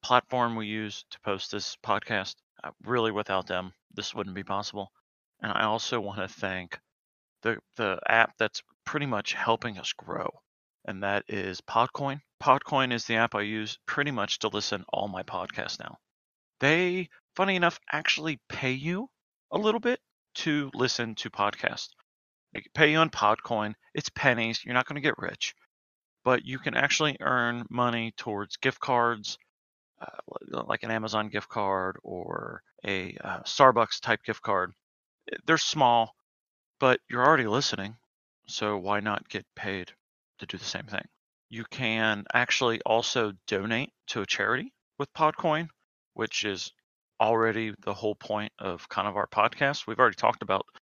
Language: English